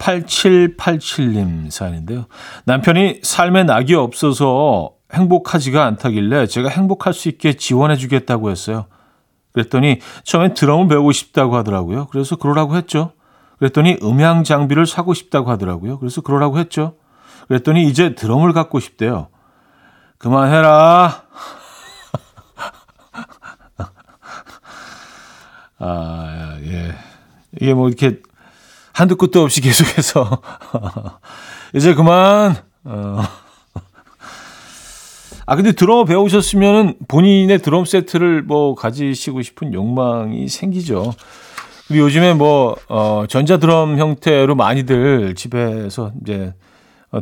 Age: 40-59